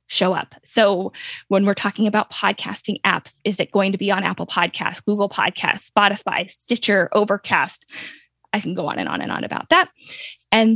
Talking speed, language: 185 wpm, English